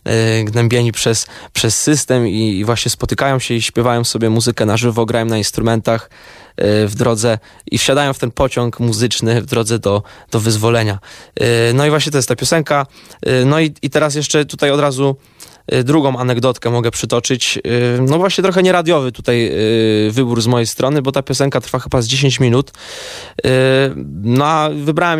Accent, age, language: native, 20-39, Polish